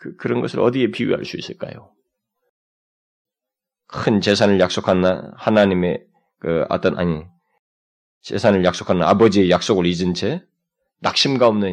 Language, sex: Korean, male